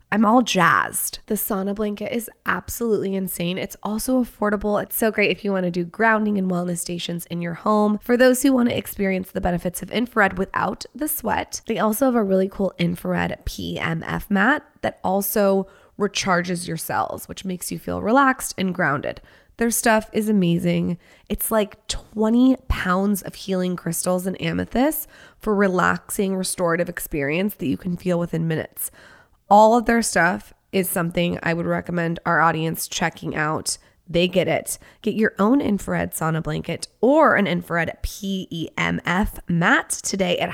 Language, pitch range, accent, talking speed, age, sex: English, 170-220 Hz, American, 165 wpm, 20-39, female